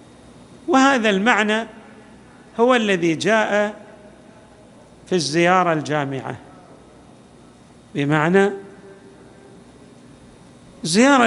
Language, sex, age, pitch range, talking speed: Arabic, male, 50-69, 150-205 Hz, 55 wpm